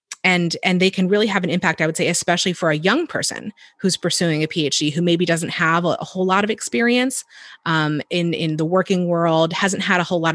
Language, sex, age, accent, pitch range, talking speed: English, female, 30-49, American, 160-210 Hz, 240 wpm